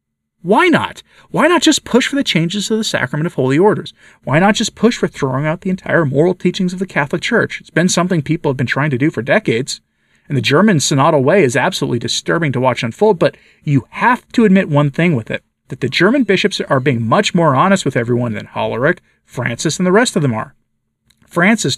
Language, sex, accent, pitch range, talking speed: English, male, American, 140-205 Hz, 225 wpm